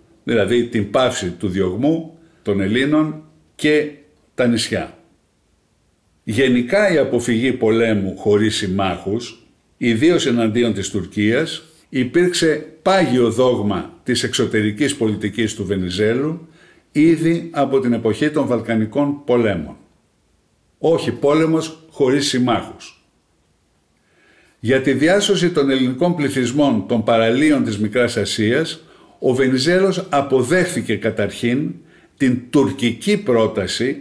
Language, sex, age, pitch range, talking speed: Greek, male, 60-79, 110-150 Hz, 100 wpm